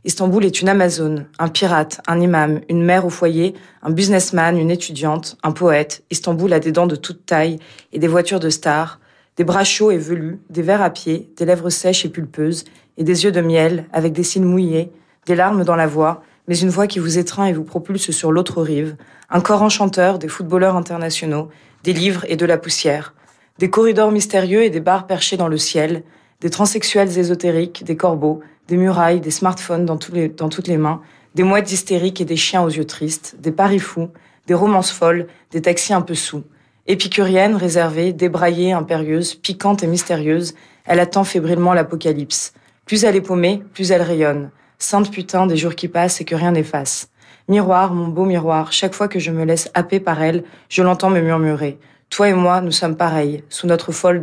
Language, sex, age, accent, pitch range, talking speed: French, female, 20-39, French, 160-185 Hz, 200 wpm